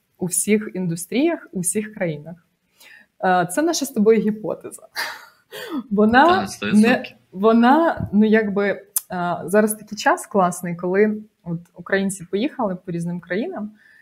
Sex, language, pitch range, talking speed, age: female, Ukrainian, 175-215 Hz, 115 wpm, 20-39